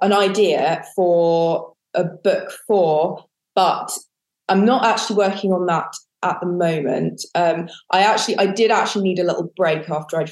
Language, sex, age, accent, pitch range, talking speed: English, female, 20-39, British, 165-200 Hz, 165 wpm